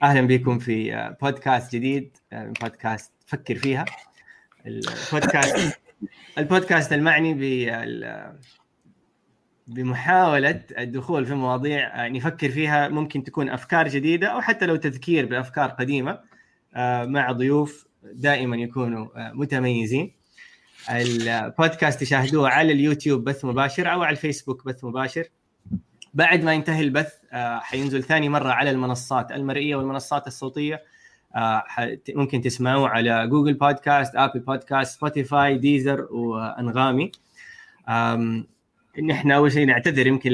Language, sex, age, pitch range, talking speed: Arabic, male, 20-39, 125-150 Hz, 105 wpm